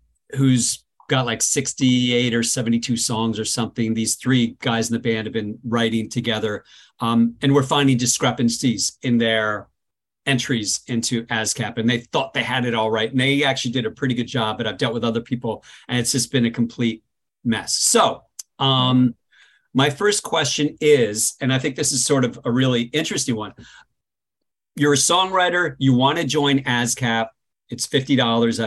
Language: English